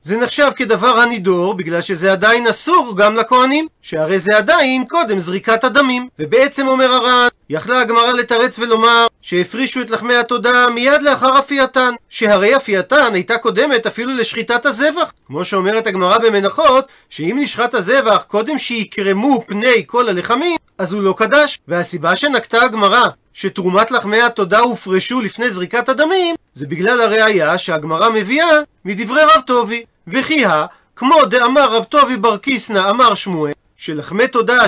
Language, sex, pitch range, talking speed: Hebrew, male, 205-260 Hz, 135 wpm